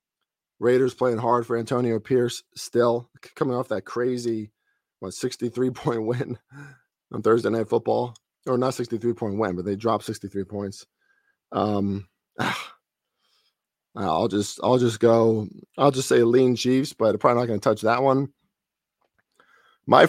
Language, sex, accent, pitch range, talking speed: English, male, American, 110-140 Hz, 145 wpm